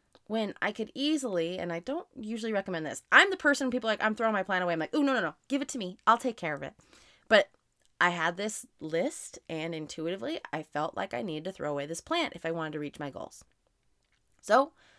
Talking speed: 245 wpm